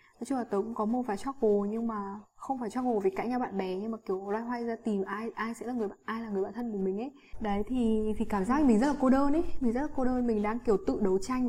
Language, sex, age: Vietnamese, female, 10-29